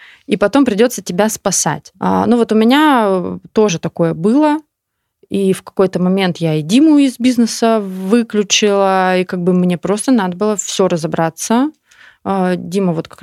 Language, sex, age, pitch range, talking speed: Russian, female, 20-39, 175-220 Hz, 165 wpm